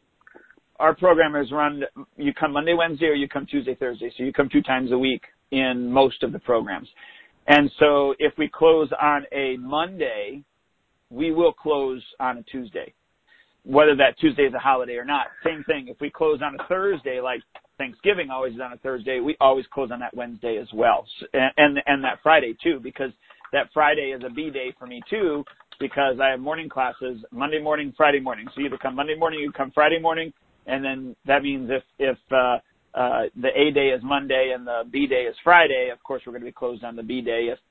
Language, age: English, 40-59